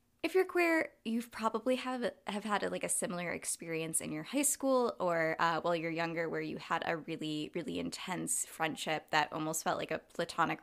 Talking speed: 210 wpm